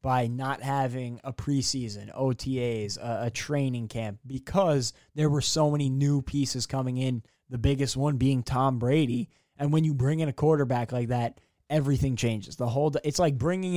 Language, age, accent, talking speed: English, 20-39, American, 180 wpm